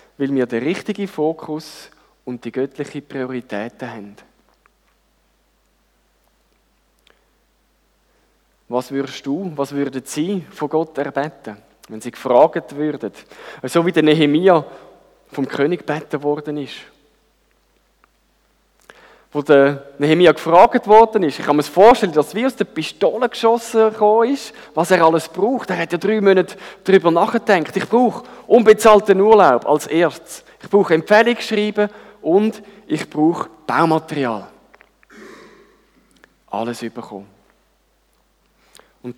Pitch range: 135-195 Hz